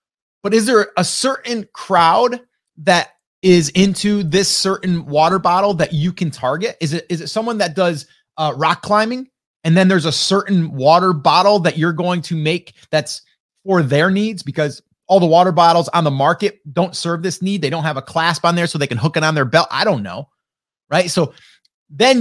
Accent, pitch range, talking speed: American, 145-190 Hz, 205 wpm